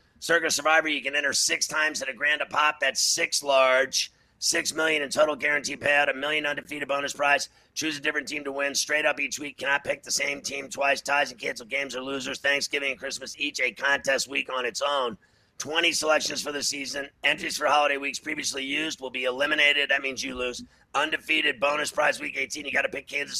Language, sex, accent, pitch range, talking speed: English, male, American, 135-155 Hz, 220 wpm